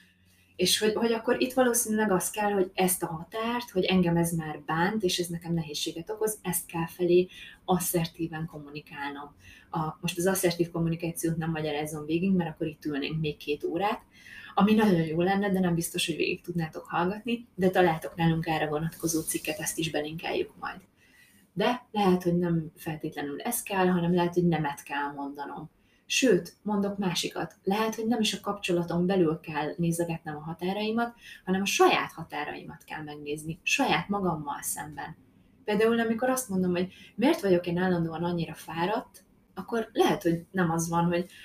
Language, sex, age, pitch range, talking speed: Hungarian, female, 20-39, 160-190 Hz, 170 wpm